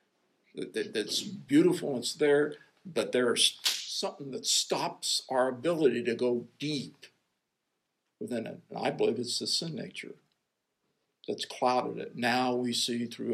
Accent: American